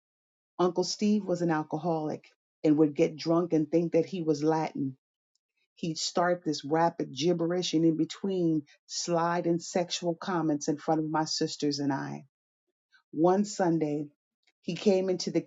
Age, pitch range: 40-59, 150-175 Hz